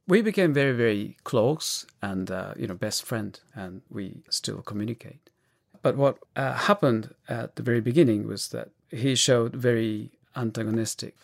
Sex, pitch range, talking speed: male, 115-150 Hz, 155 wpm